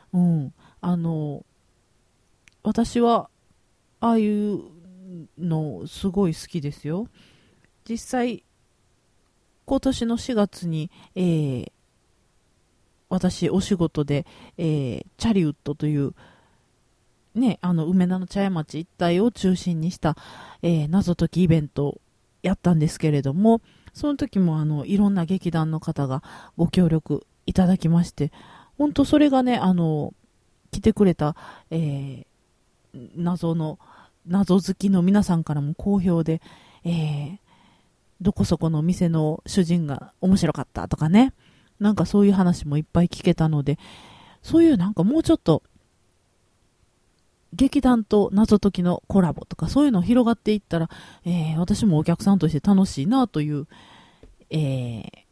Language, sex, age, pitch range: Japanese, female, 40-59, 150-195 Hz